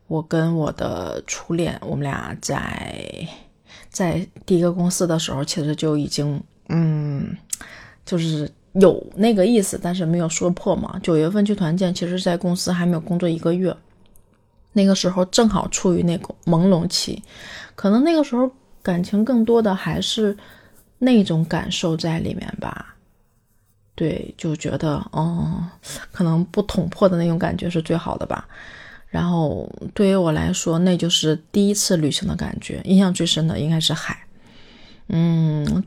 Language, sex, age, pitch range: Chinese, female, 20-39, 165-200 Hz